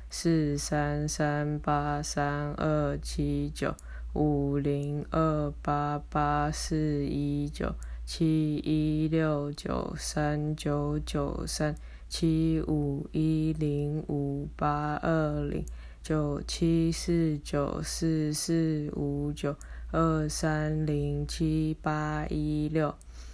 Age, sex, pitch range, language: 20-39, female, 145-155 Hz, Chinese